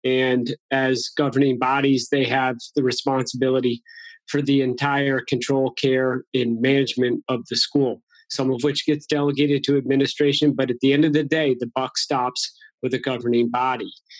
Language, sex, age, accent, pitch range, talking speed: English, male, 30-49, American, 125-145 Hz, 165 wpm